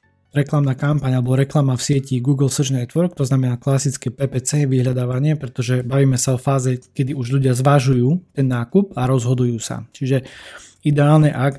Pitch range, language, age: 125-140 Hz, Slovak, 20-39